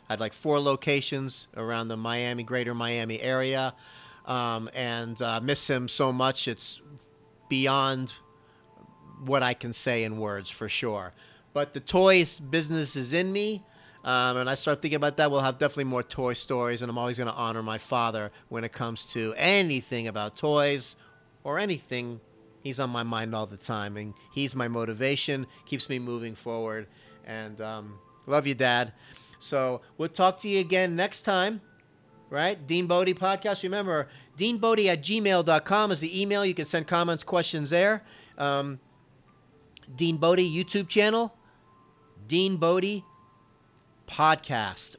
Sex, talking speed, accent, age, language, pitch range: male, 155 wpm, American, 40-59, English, 120-170 Hz